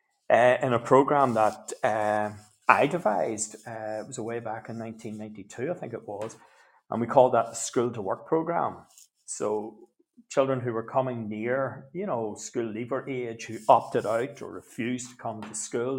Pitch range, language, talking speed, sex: 110-145 Hz, English, 170 wpm, male